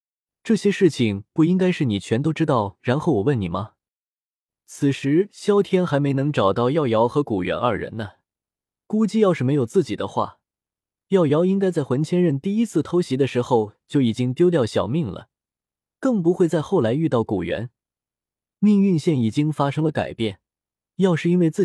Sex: male